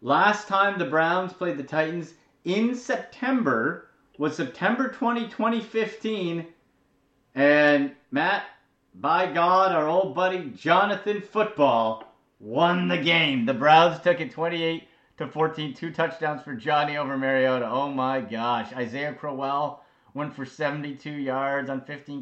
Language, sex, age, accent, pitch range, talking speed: English, male, 30-49, American, 140-195 Hz, 130 wpm